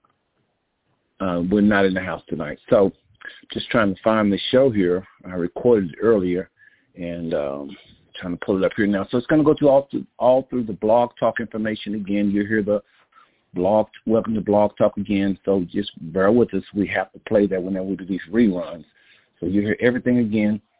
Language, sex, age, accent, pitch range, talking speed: English, male, 50-69, American, 95-120 Hz, 210 wpm